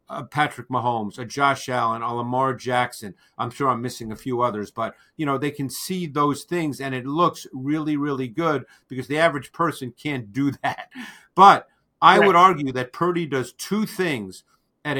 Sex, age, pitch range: male, 50-69, 130-165 Hz